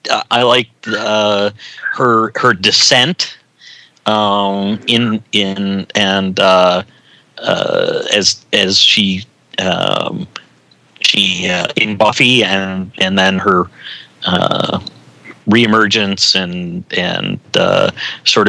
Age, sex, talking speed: 40-59, male, 95 wpm